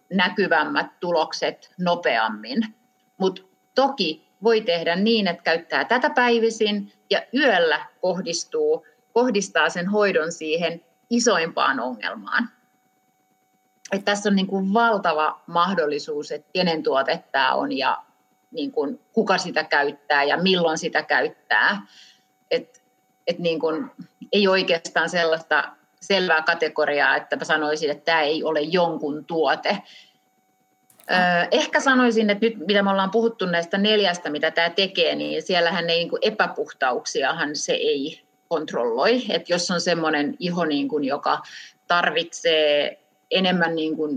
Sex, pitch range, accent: female, 160-230 Hz, native